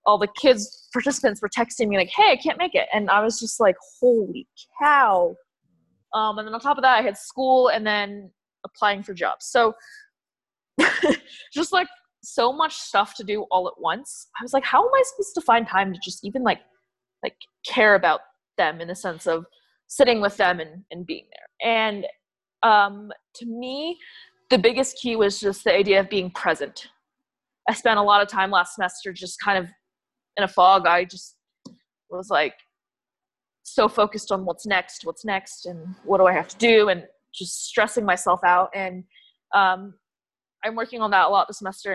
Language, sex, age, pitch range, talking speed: English, female, 20-39, 195-255 Hz, 195 wpm